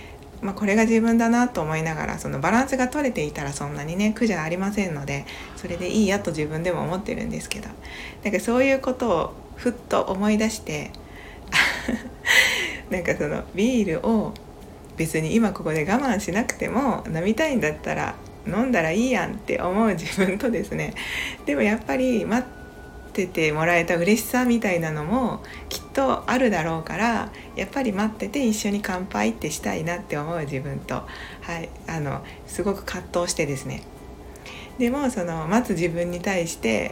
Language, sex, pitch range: Japanese, female, 170-230 Hz